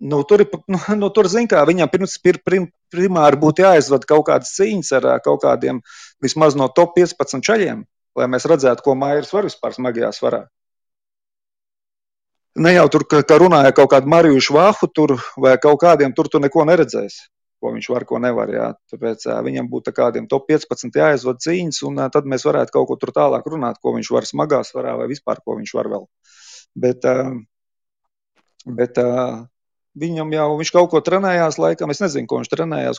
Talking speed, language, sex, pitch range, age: 165 wpm, English, male, 130-170 Hz, 30-49